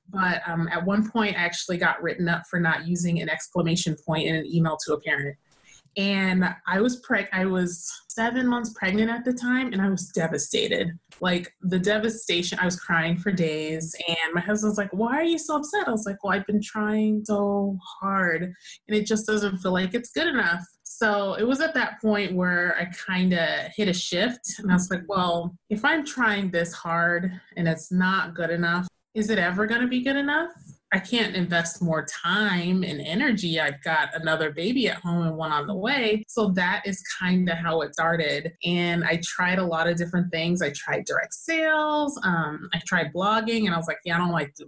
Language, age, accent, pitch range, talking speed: English, 30-49, American, 170-220 Hz, 215 wpm